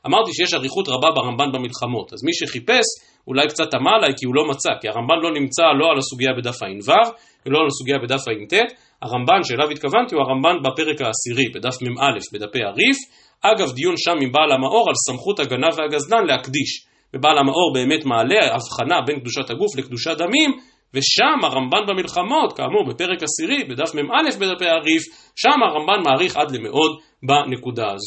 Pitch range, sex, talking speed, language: 130-210 Hz, male, 135 wpm, Hebrew